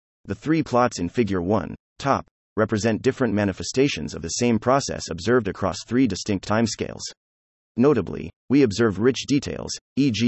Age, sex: 30-49, male